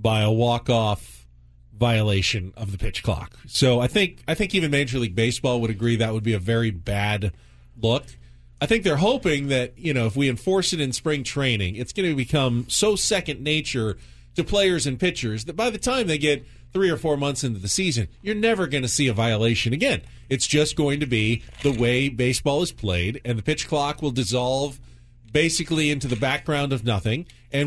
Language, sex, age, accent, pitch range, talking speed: English, male, 40-59, American, 110-145 Hz, 205 wpm